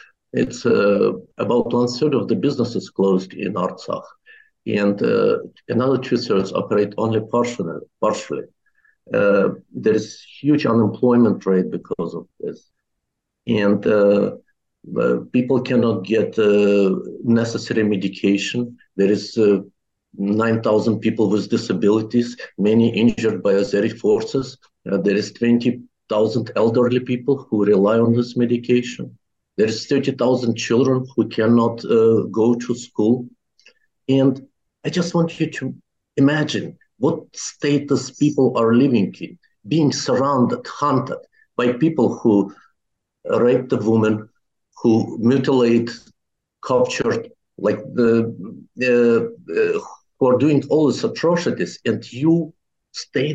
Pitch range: 105-130 Hz